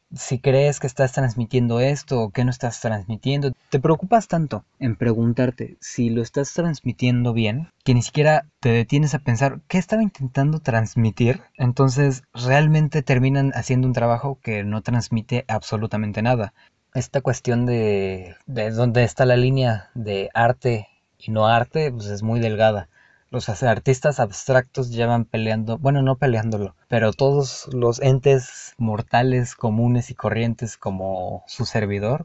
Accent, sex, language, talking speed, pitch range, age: Mexican, male, Spanish, 145 wpm, 110-135 Hz, 20-39